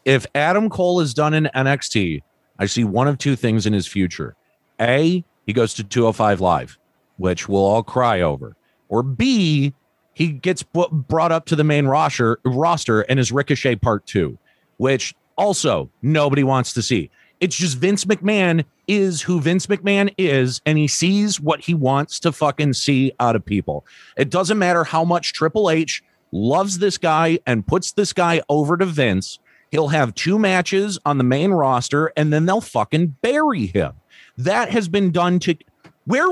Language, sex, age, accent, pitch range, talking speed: English, male, 40-59, American, 130-195 Hz, 175 wpm